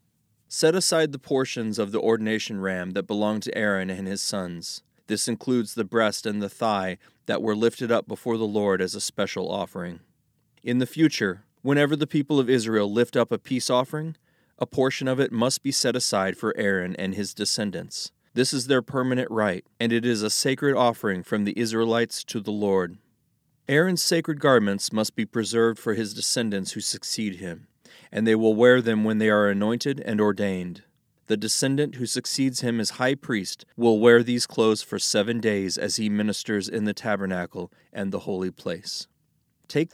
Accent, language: American, English